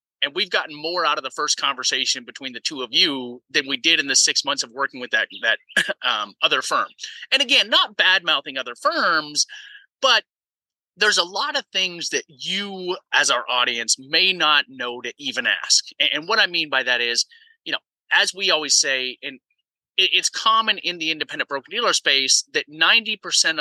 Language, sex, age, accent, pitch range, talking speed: English, male, 30-49, American, 130-190 Hz, 195 wpm